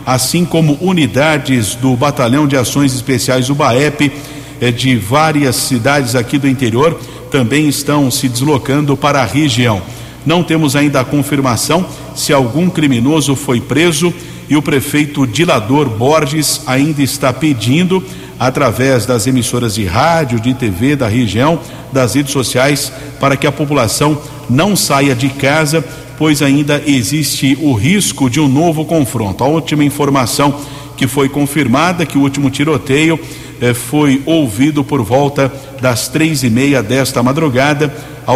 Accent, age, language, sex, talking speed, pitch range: Brazilian, 50-69, Portuguese, male, 145 wpm, 130-150 Hz